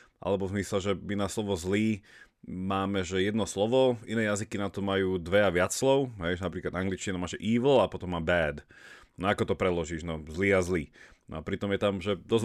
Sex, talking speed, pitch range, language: male, 215 wpm, 90-115 Hz, Slovak